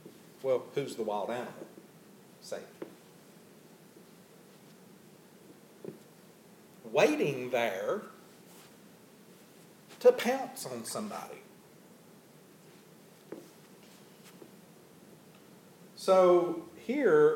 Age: 50-69